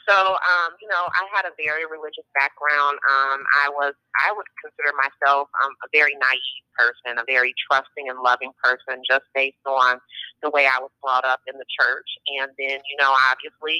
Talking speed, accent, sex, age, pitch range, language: 190 wpm, American, female, 30-49, 130-155 Hz, English